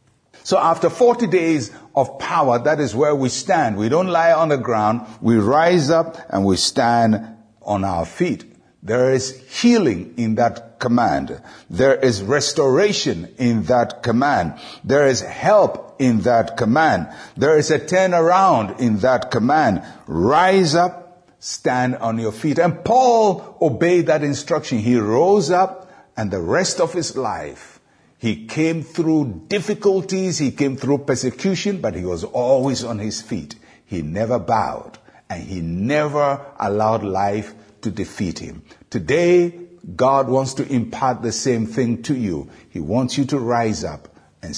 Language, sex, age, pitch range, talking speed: English, male, 60-79, 115-170 Hz, 155 wpm